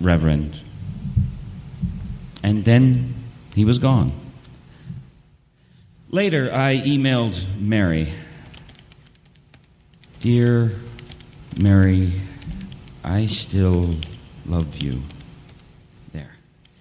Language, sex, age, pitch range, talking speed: English, male, 40-59, 90-145 Hz, 60 wpm